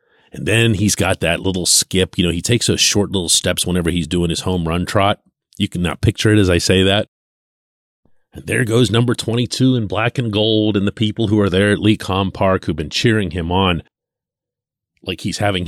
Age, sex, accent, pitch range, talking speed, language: 40-59, male, American, 85-110 Hz, 220 wpm, English